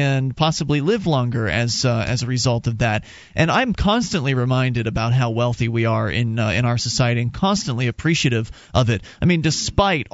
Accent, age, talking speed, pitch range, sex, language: American, 30-49, 195 wpm, 135-205 Hz, male, English